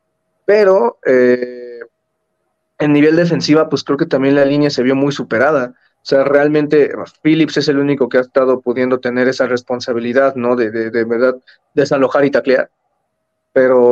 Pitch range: 125-145 Hz